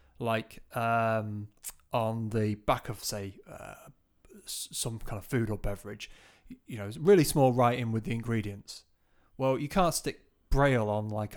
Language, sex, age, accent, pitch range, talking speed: English, male, 30-49, British, 105-130 Hz, 155 wpm